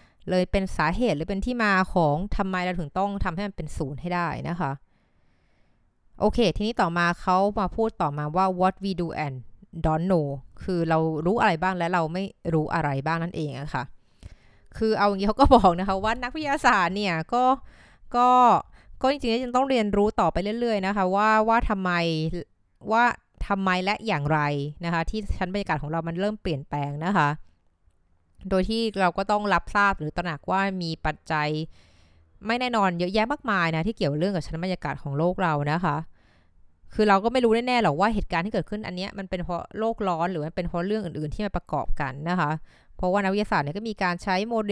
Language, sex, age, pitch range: Thai, female, 20-39, 155-205 Hz